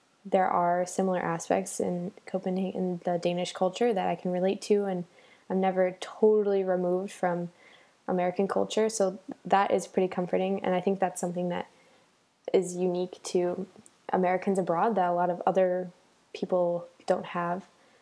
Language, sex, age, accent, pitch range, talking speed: English, female, 10-29, American, 180-205 Hz, 155 wpm